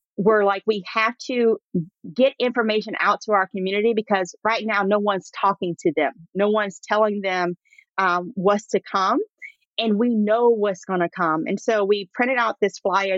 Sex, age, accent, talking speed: female, 40-59, American, 185 wpm